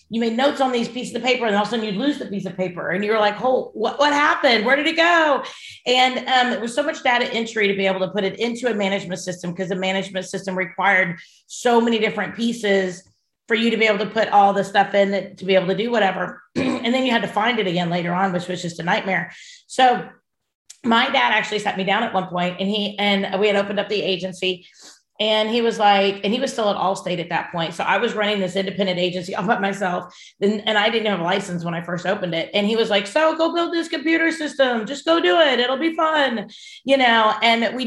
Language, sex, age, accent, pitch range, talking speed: English, female, 40-59, American, 190-240 Hz, 260 wpm